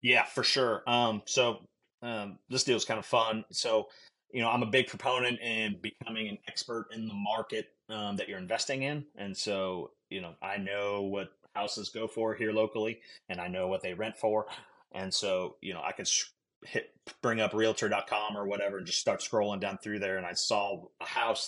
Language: English